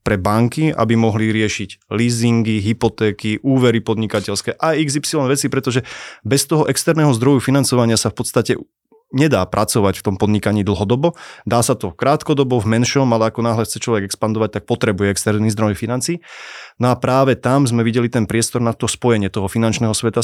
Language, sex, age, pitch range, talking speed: Slovak, male, 20-39, 110-130 Hz, 170 wpm